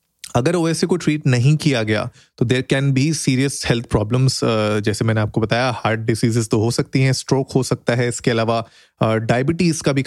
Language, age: Hindi, 30-49